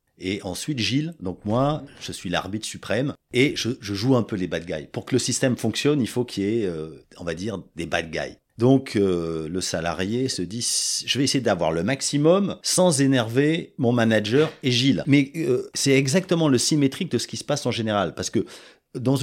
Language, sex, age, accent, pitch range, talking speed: French, male, 40-59, French, 100-140 Hz, 230 wpm